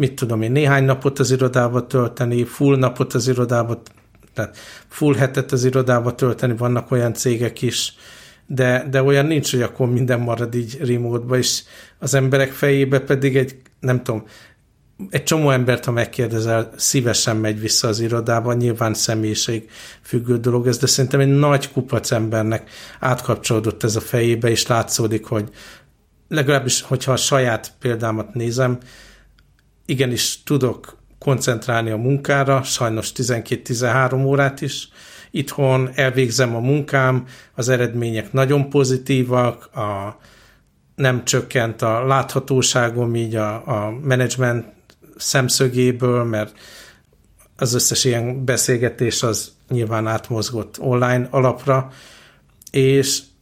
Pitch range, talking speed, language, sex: 115-135 Hz, 125 wpm, Hungarian, male